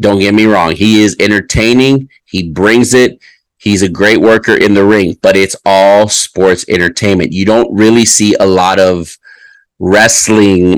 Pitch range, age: 95-110 Hz, 30-49